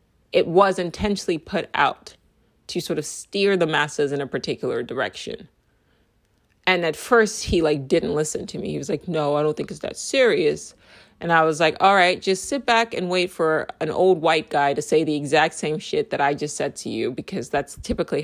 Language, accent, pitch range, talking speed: English, American, 150-200 Hz, 215 wpm